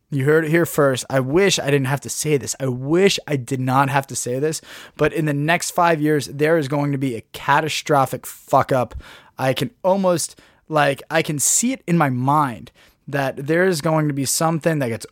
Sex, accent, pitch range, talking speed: male, American, 135-165 Hz, 225 wpm